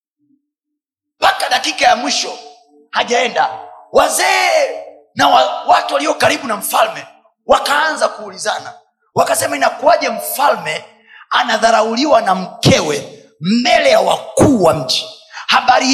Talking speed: 100 wpm